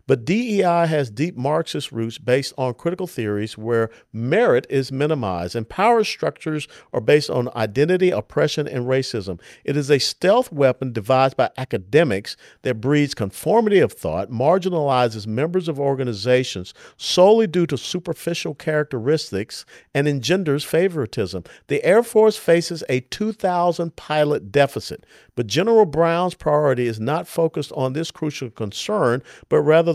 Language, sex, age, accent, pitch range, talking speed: English, male, 50-69, American, 120-170 Hz, 140 wpm